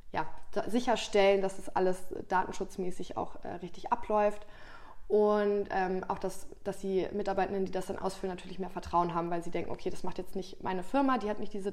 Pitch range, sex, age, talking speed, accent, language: 185-200 Hz, female, 20-39, 205 wpm, German, German